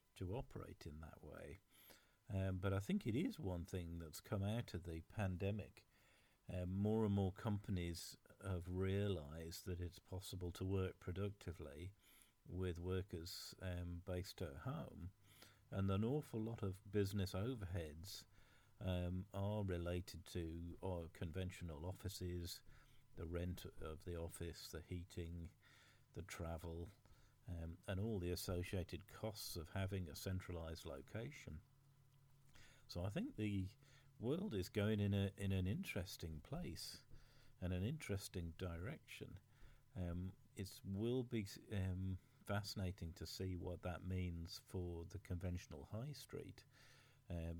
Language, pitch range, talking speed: English, 90-105 Hz, 135 wpm